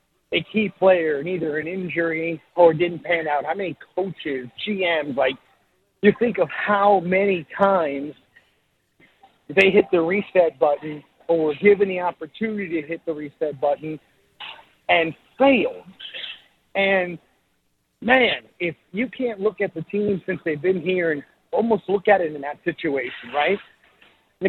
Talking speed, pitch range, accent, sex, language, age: 150 wpm, 165-210 Hz, American, male, English, 50-69